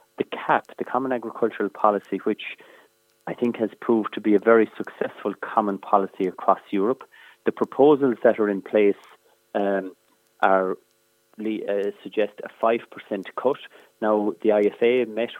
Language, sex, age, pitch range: English, male, 30-49, 105-120 Hz